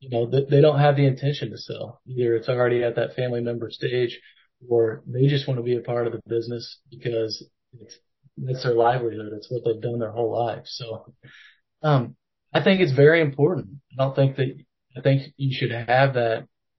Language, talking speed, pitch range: English, 205 wpm, 120-135 Hz